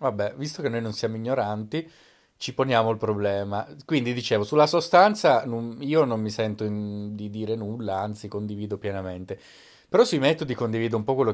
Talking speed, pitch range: 170 wpm, 110-135 Hz